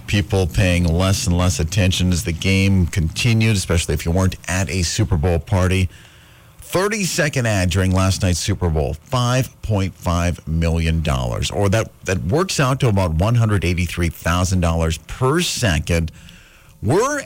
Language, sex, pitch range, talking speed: English, male, 80-105 Hz, 135 wpm